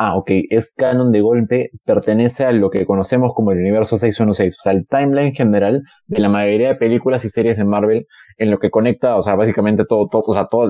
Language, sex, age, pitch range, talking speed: Spanish, male, 20-39, 105-125 Hz, 230 wpm